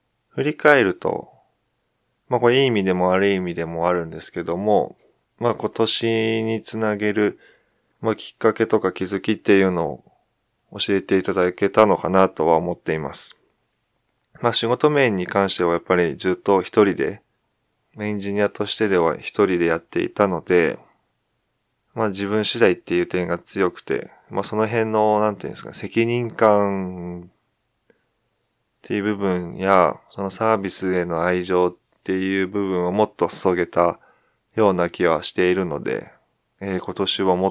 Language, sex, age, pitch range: Japanese, male, 20-39, 90-110 Hz